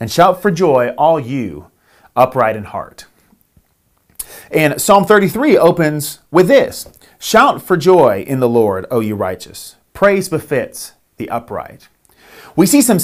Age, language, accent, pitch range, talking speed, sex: 30-49, English, American, 135-190 Hz, 145 wpm, male